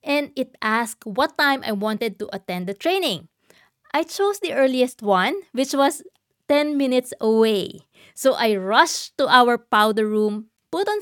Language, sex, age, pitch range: English, female, 20-39, 210-285 Hz